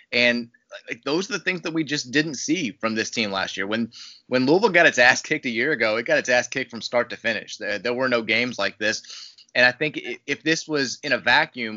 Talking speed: 255 wpm